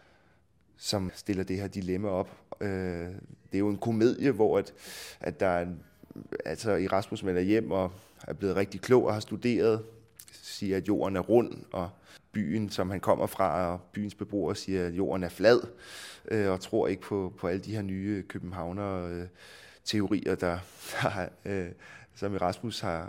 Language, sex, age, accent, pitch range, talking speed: Danish, male, 20-39, native, 90-105 Hz, 165 wpm